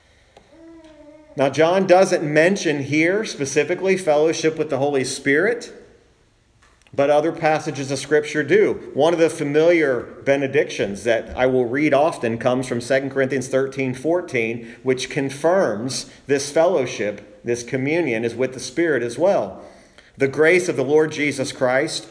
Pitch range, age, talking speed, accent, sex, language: 125-160 Hz, 40-59, 140 wpm, American, male, English